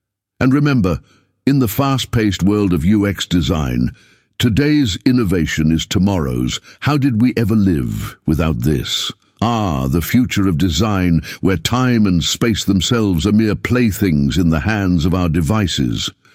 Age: 60-79